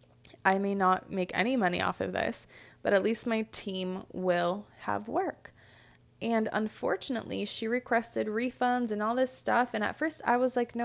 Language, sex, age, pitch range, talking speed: English, female, 20-39, 200-245 Hz, 185 wpm